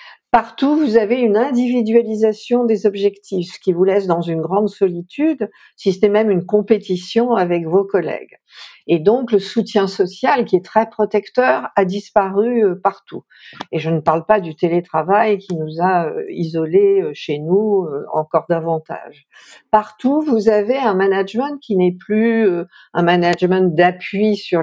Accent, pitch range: French, 175-230 Hz